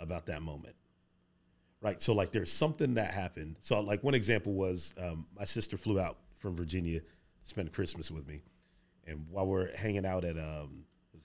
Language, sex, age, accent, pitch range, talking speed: English, male, 30-49, American, 85-100 Hz, 185 wpm